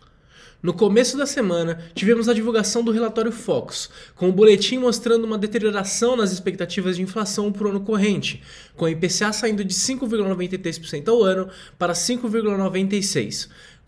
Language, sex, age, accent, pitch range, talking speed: Portuguese, male, 20-39, Brazilian, 175-220 Hz, 145 wpm